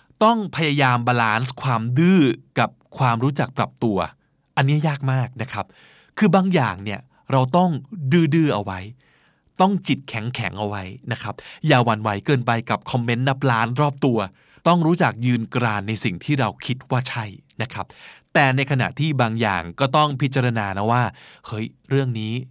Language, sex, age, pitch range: Thai, male, 20-39, 120-165 Hz